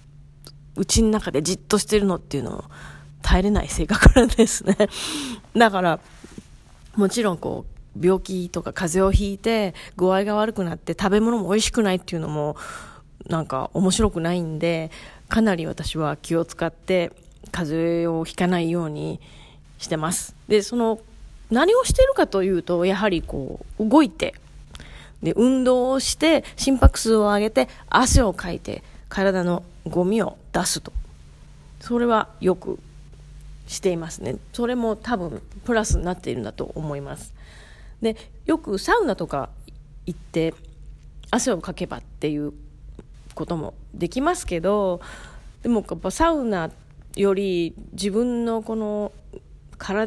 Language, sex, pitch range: Japanese, female, 165-225 Hz